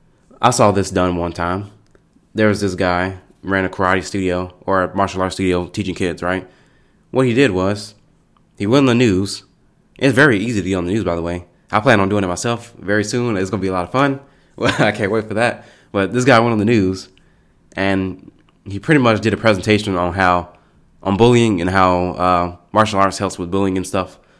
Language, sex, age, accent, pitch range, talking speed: English, male, 20-39, American, 90-105 Hz, 230 wpm